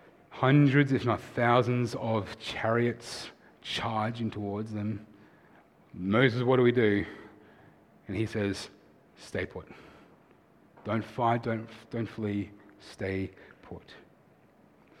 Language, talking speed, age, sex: English, 105 wpm, 30-49, male